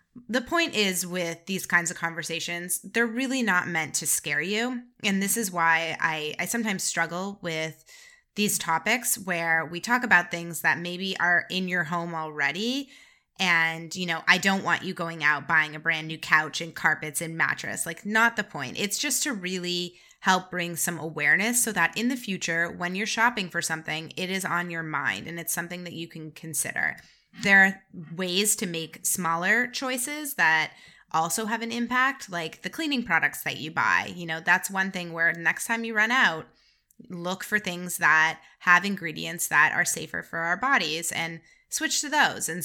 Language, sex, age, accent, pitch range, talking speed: English, female, 20-39, American, 165-225 Hz, 195 wpm